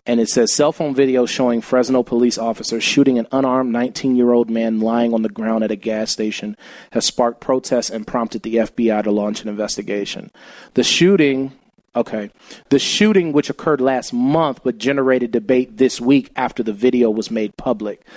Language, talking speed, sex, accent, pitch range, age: English, 180 wpm, male, American, 115-140 Hz, 30-49